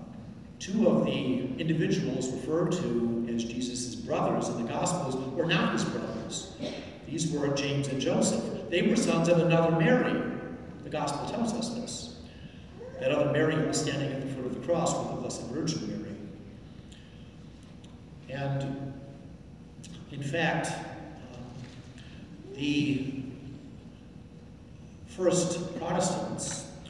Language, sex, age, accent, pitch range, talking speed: English, male, 50-69, American, 125-170 Hz, 120 wpm